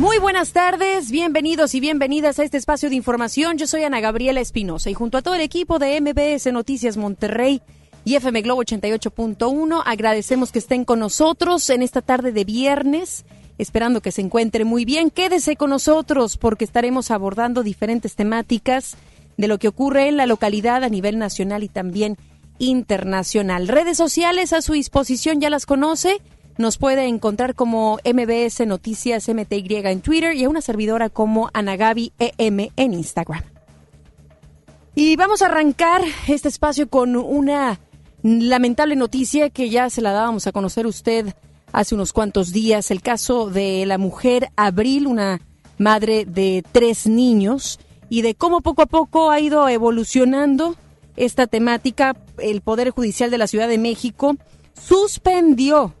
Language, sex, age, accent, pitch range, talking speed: Spanish, female, 30-49, Mexican, 215-290 Hz, 155 wpm